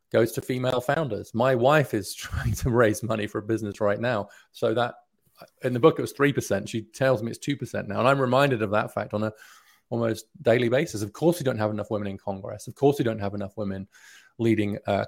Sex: male